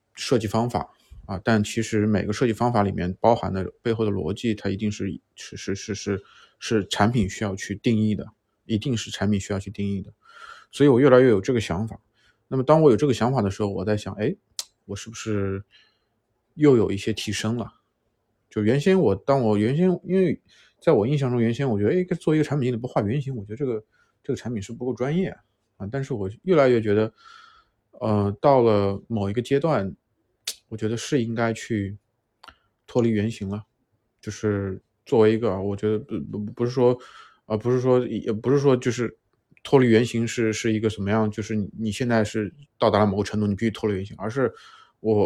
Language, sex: Chinese, male